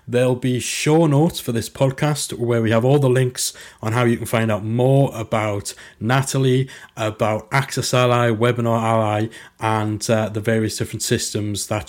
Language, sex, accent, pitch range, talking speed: English, male, British, 115-155 Hz, 170 wpm